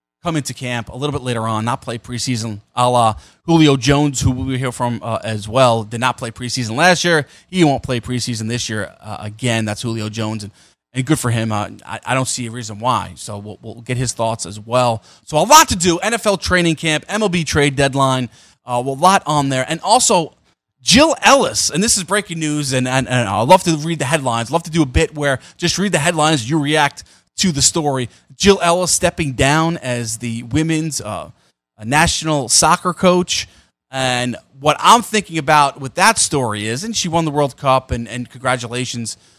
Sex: male